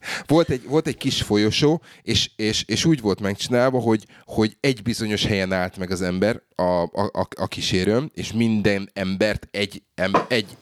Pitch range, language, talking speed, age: 95-115 Hz, Hungarian, 170 wpm, 30-49